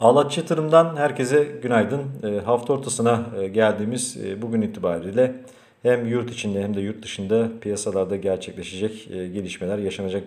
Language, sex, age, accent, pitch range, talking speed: Turkish, male, 40-59, native, 105-120 Hz, 110 wpm